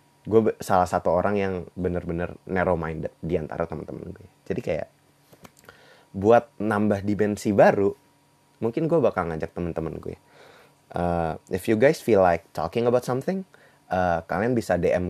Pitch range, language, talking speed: 85-110 Hz, Indonesian, 145 wpm